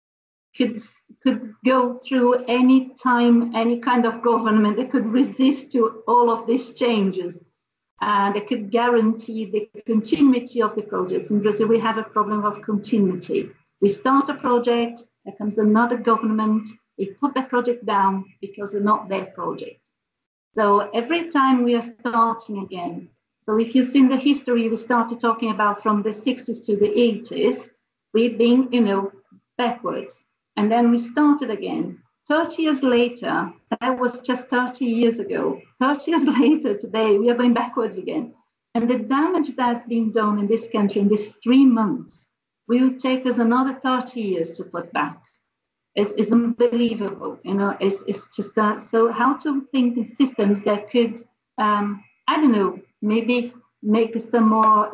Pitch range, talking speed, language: 215-245 Hz, 165 wpm, English